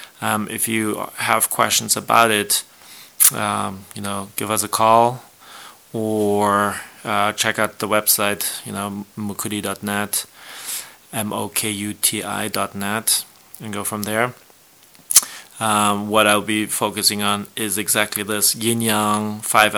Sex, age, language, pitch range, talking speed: male, 30-49, English, 105-115 Hz, 135 wpm